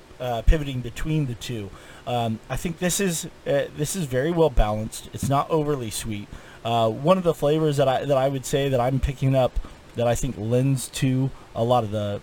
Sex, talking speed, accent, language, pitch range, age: male, 215 wpm, American, English, 115-145 Hz, 30-49